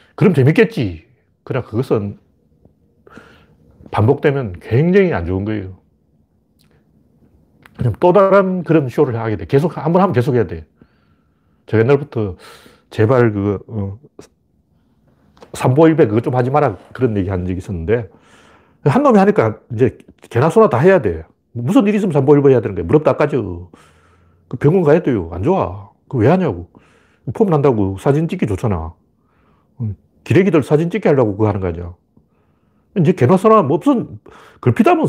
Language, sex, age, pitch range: Korean, male, 40-59, 95-155 Hz